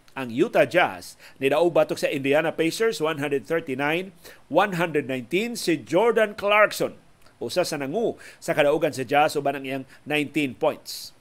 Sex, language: male, Filipino